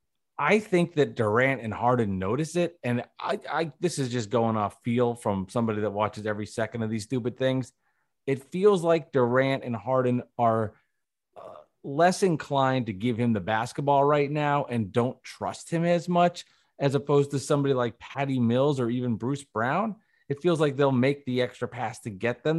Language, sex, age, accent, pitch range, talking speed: English, male, 30-49, American, 115-140 Hz, 190 wpm